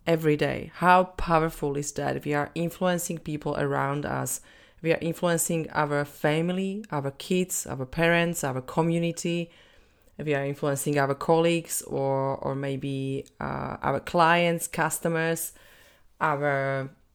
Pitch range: 140-170 Hz